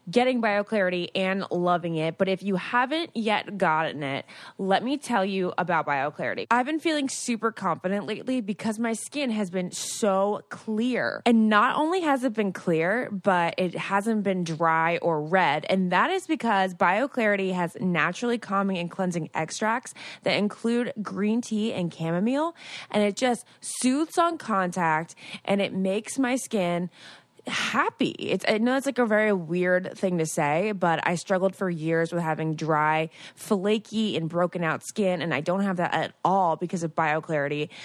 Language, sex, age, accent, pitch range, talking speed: English, female, 20-39, American, 175-225 Hz, 170 wpm